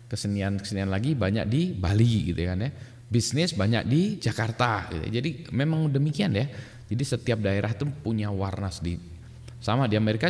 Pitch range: 100-125 Hz